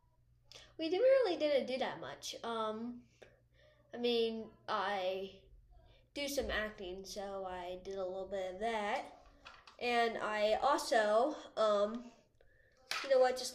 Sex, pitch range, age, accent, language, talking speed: female, 215-275 Hz, 20-39, American, English, 135 wpm